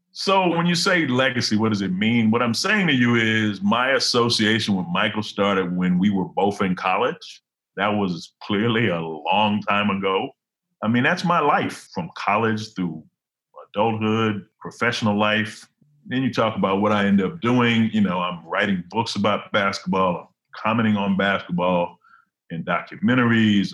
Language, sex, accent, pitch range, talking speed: English, male, American, 100-120 Hz, 165 wpm